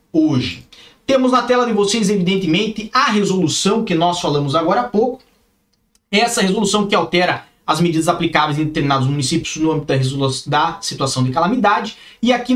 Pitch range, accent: 170-235 Hz, Brazilian